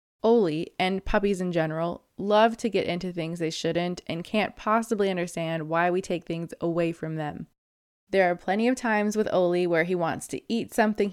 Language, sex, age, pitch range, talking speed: English, female, 20-39, 170-210 Hz, 195 wpm